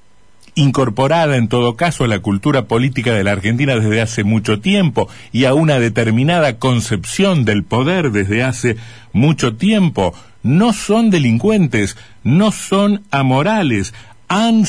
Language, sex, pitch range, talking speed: Spanish, male, 110-165 Hz, 135 wpm